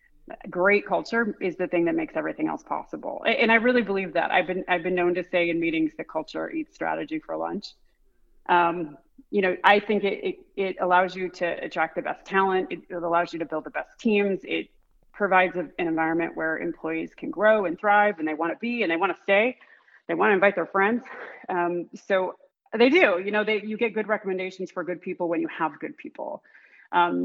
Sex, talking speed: female, 220 wpm